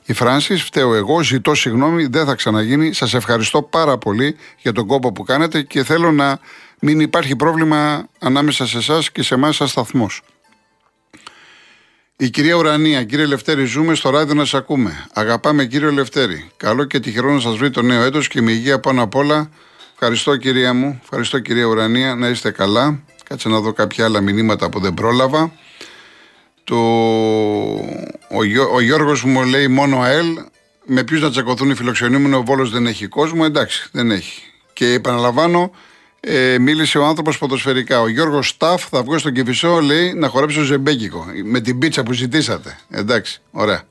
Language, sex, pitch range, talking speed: Greek, male, 120-150 Hz, 175 wpm